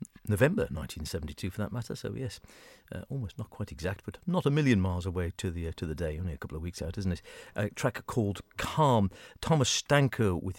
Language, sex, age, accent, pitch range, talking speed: English, male, 50-69, British, 85-115 Hz, 220 wpm